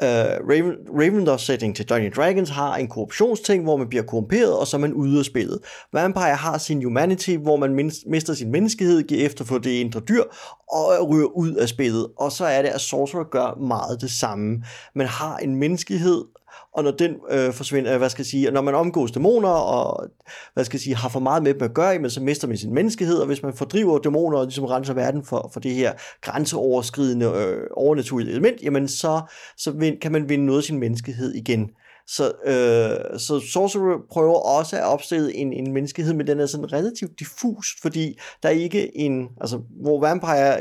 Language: Danish